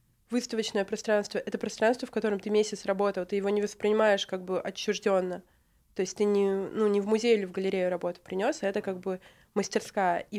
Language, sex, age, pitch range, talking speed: Russian, female, 20-39, 195-220 Hz, 200 wpm